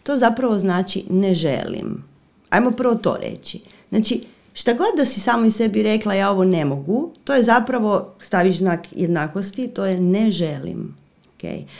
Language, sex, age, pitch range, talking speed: Croatian, female, 40-59, 175-255 Hz, 170 wpm